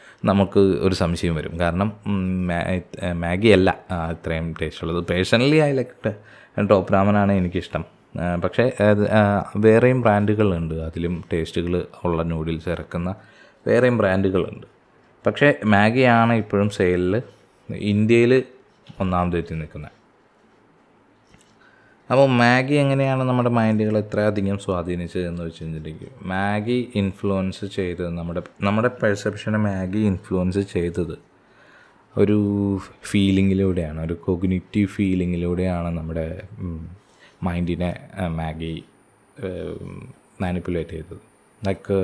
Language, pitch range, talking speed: Malayalam, 85-105 Hz, 85 wpm